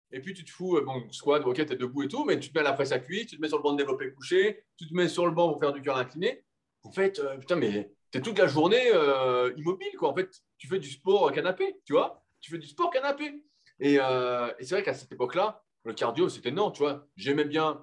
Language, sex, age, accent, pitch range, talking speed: French, male, 30-49, French, 130-185 Hz, 290 wpm